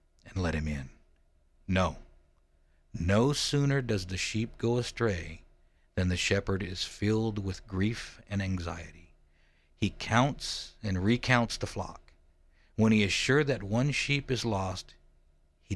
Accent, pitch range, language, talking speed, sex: American, 70-110 Hz, English, 140 wpm, male